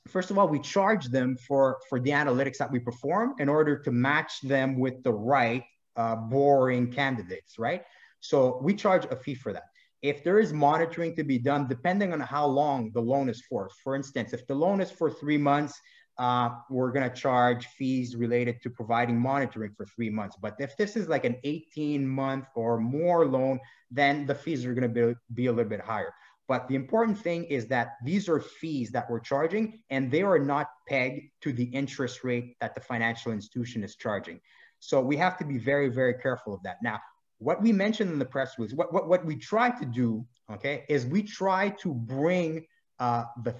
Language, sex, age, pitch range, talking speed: English, male, 30-49, 125-155 Hz, 210 wpm